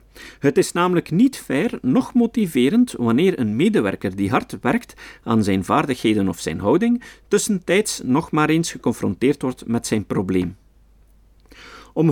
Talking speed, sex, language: 145 wpm, male, Dutch